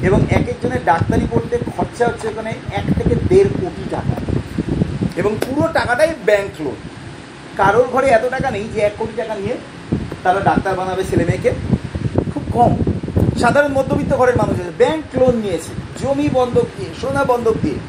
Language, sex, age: Bengali, male, 40-59